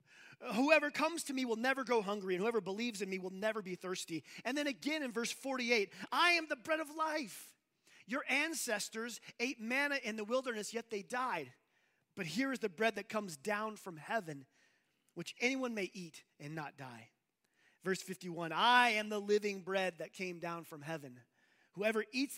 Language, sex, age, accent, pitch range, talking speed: English, male, 30-49, American, 195-265 Hz, 190 wpm